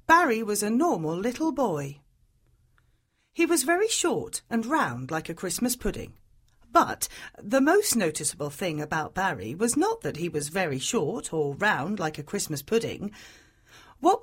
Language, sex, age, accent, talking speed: English, female, 40-59, British, 155 wpm